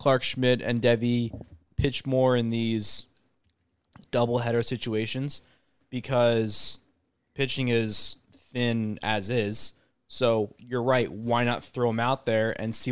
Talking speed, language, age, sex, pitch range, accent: 125 wpm, English, 20-39, male, 110-130 Hz, American